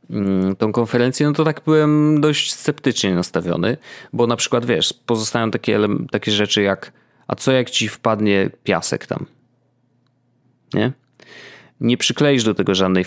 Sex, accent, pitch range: male, native, 105-125 Hz